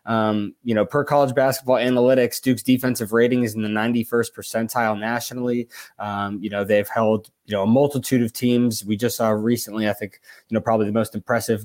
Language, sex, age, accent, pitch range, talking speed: English, male, 20-39, American, 110-135 Hz, 200 wpm